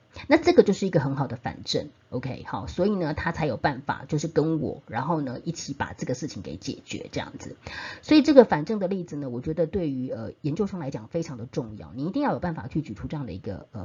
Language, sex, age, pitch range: Chinese, female, 30-49, 130-190 Hz